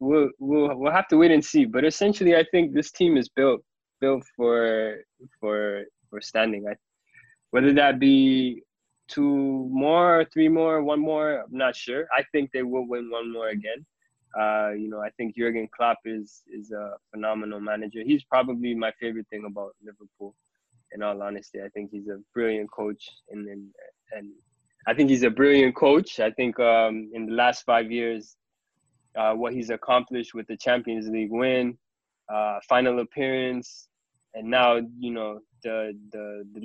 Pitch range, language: 105-125 Hz, English